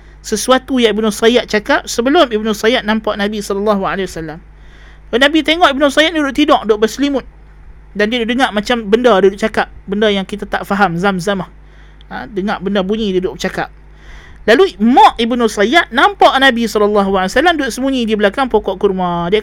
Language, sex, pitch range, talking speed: Malay, male, 200-255 Hz, 175 wpm